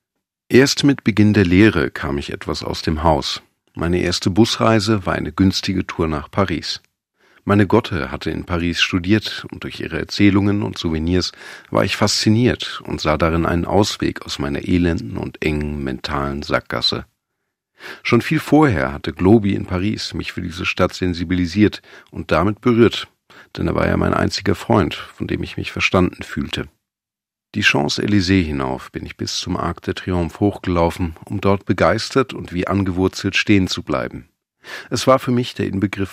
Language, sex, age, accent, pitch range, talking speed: German, male, 40-59, German, 85-105 Hz, 170 wpm